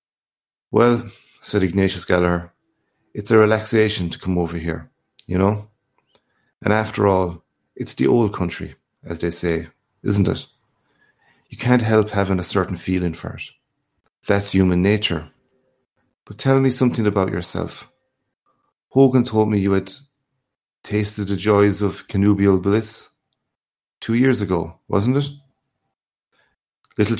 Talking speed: 130 wpm